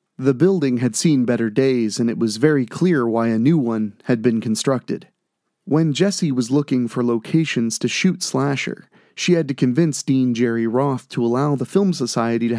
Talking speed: 190 wpm